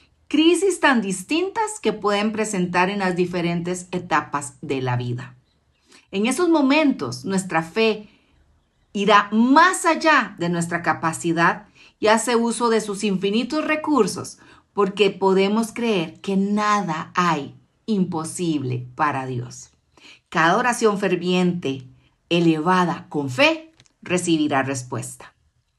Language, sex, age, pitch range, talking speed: Spanish, female, 40-59, 170-230 Hz, 110 wpm